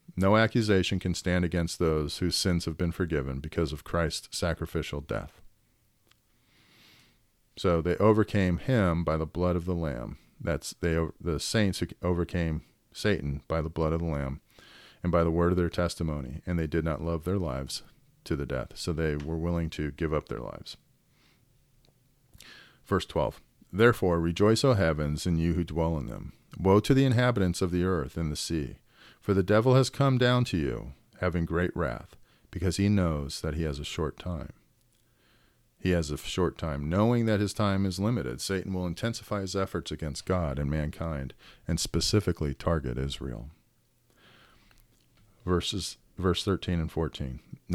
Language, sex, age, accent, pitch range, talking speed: English, male, 40-59, American, 80-100 Hz, 170 wpm